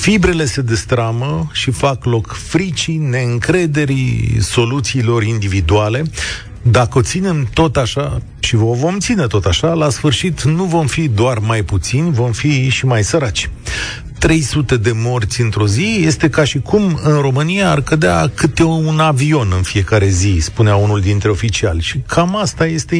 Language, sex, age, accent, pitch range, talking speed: Romanian, male, 40-59, native, 110-155 Hz, 160 wpm